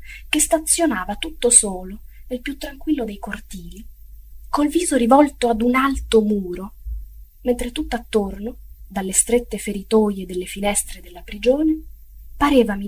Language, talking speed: Italian, 125 wpm